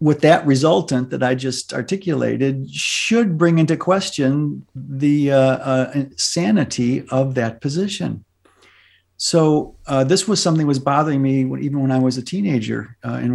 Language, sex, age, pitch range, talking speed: English, male, 50-69, 120-155 Hz, 155 wpm